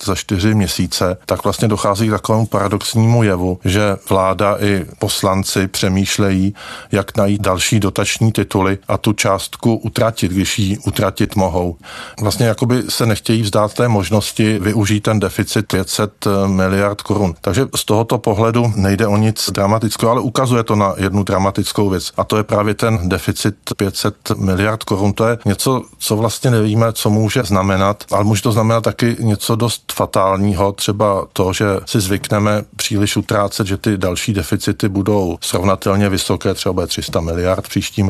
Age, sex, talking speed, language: 50-69, male, 160 wpm, Czech